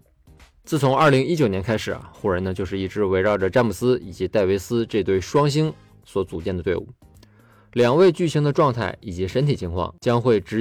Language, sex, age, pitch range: Chinese, male, 20-39, 90-125 Hz